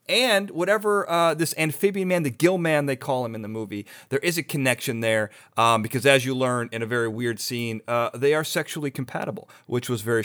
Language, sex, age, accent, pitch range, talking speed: English, male, 40-59, American, 120-165 Hz, 225 wpm